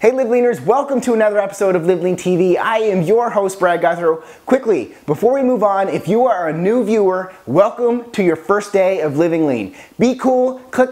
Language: English